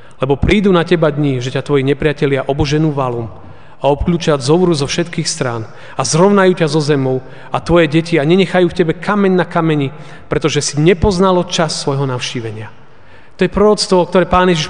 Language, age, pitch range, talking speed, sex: Slovak, 30-49, 130-160 Hz, 180 wpm, male